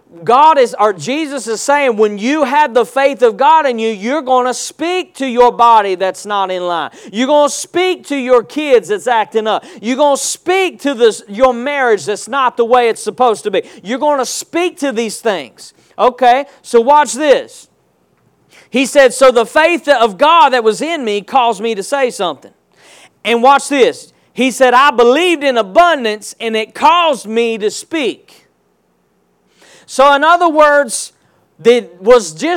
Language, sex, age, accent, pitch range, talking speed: English, male, 40-59, American, 210-285 Hz, 180 wpm